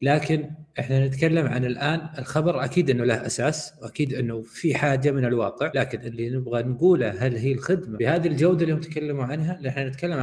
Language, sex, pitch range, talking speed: Arabic, male, 120-150 Hz, 180 wpm